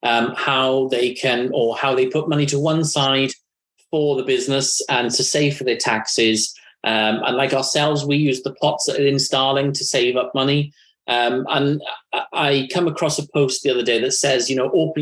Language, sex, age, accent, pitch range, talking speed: English, male, 30-49, British, 130-160 Hz, 205 wpm